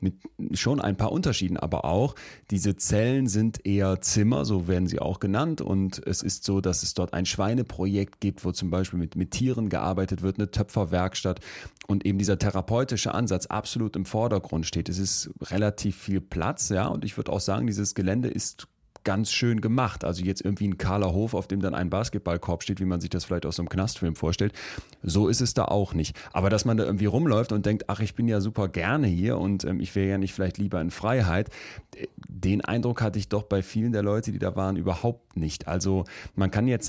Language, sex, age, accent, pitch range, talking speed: German, male, 30-49, German, 90-105 Hz, 220 wpm